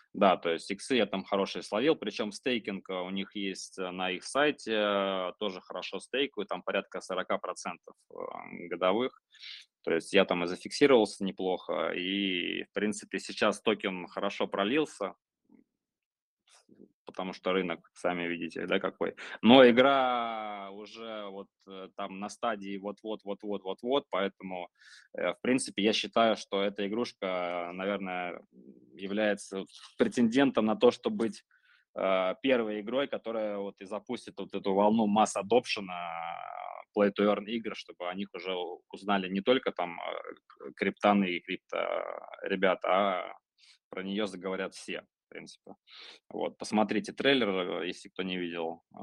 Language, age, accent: Russian, 20-39, native